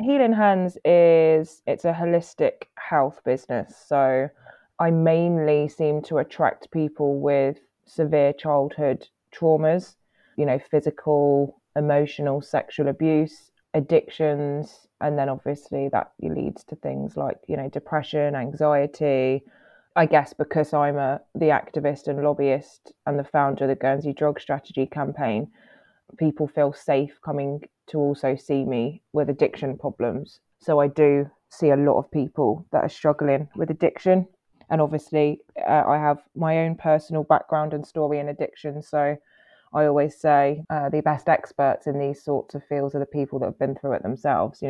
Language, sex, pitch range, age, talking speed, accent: English, female, 140-155 Hz, 20-39, 155 wpm, British